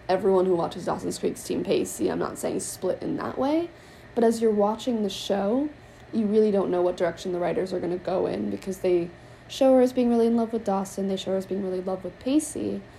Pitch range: 180-230 Hz